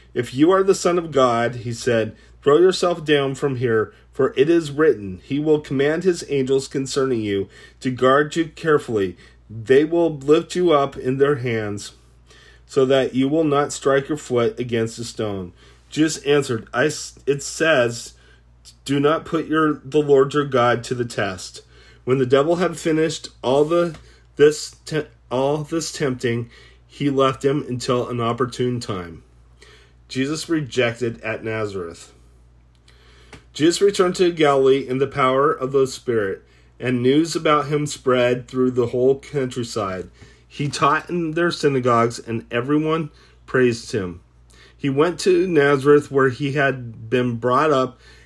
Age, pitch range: 30-49, 115-150 Hz